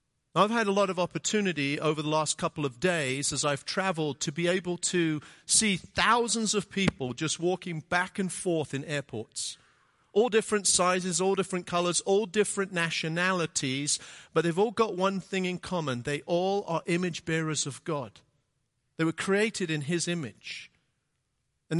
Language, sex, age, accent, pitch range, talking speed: English, male, 50-69, British, 140-185 Hz, 170 wpm